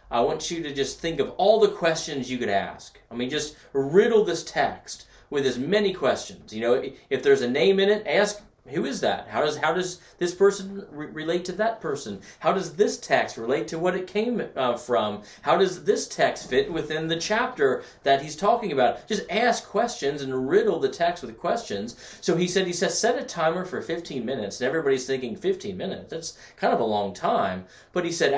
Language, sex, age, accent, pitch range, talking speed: English, male, 30-49, American, 130-205 Hz, 220 wpm